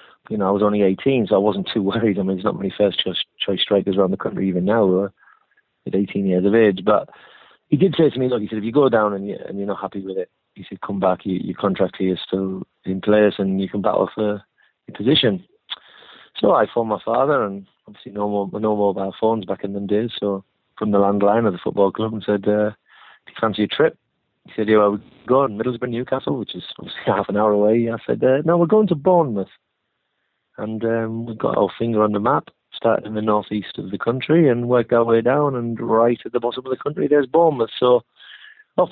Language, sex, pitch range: English, male, 100-120 Hz